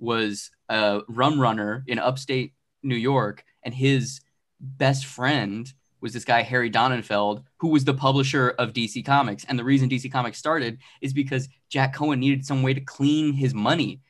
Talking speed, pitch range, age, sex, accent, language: 175 wpm, 120-140 Hz, 20-39, male, American, English